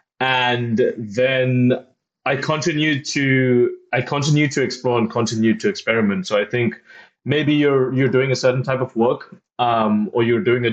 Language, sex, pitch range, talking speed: English, male, 110-130 Hz, 170 wpm